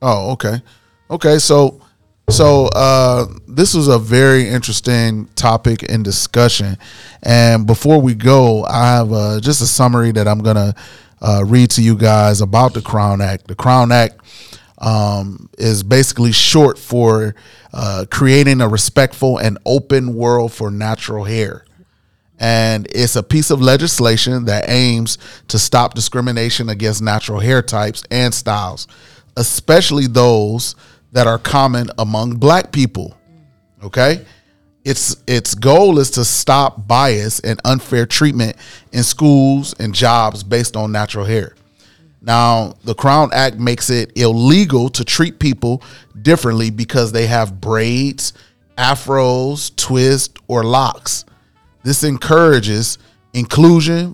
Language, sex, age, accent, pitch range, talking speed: English, male, 30-49, American, 110-130 Hz, 135 wpm